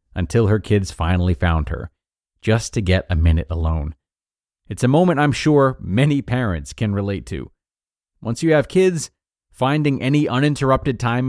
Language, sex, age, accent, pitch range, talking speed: English, male, 40-59, American, 95-130 Hz, 160 wpm